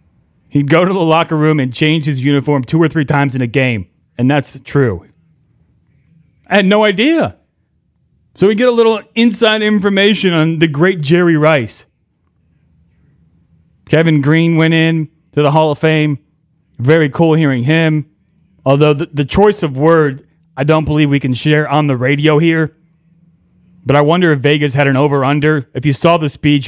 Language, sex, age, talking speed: English, male, 30-49, 175 wpm